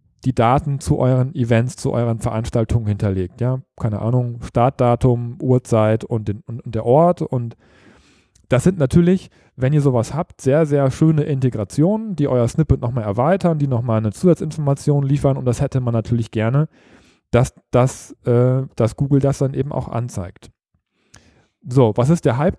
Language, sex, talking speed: German, male, 165 wpm